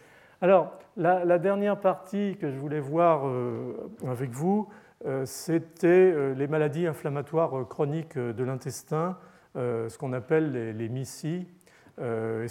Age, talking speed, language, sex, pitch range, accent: 40-59, 145 wpm, French, male, 115-150 Hz, French